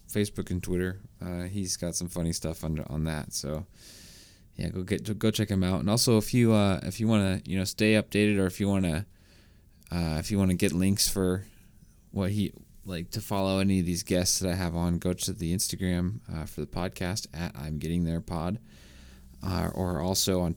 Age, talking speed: 20-39, 215 wpm